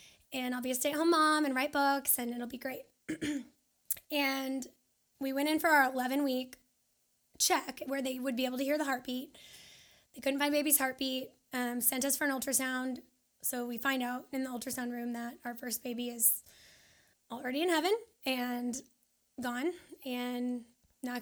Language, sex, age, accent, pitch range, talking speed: English, female, 10-29, American, 245-280 Hz, 175 wpm